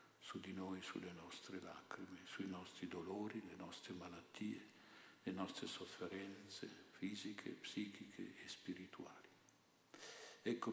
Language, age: Italian, 50-69